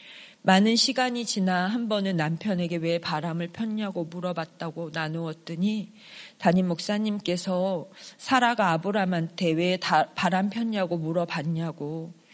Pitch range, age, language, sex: 175-215 Hz, 40-59, Korean, female